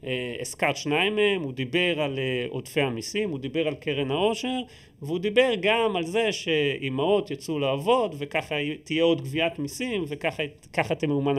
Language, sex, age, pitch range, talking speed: Hebrew, male, 30-49, 140-195 Hz, 150 wpm